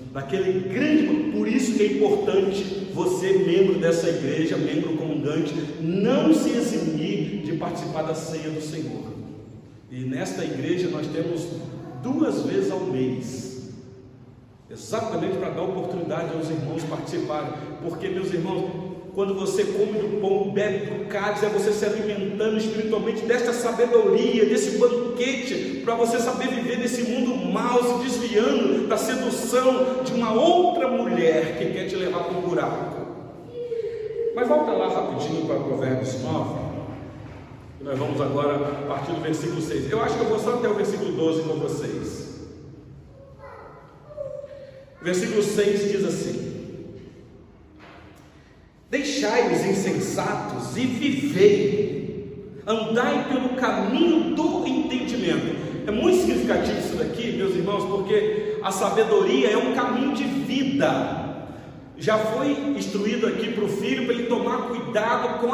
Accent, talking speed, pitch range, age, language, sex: Brazilian, 135 wpm, 165-240 Hz, 40-59, Portuguese, male